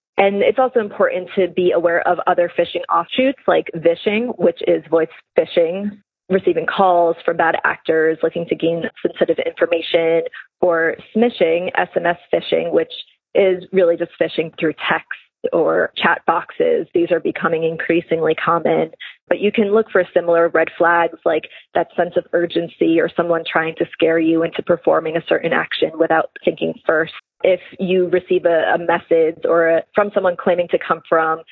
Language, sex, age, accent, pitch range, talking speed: English, female, 20-39, American, 165-195 Hz, 165 wpm